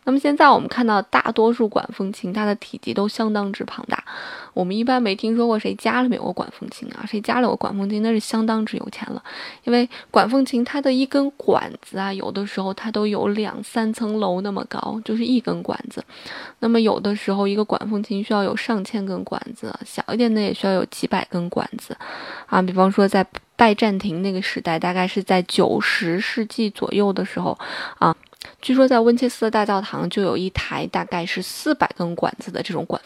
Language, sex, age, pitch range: Chinese, female, 20-39, 195-240 Hz